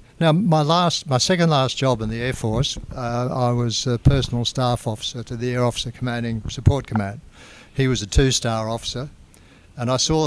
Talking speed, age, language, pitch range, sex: 180 wpm, 60-79, English, 115-130 Hz, male